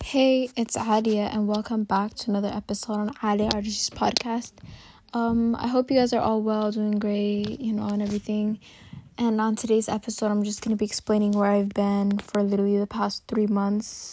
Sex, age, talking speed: female, 10-29, 195 wpm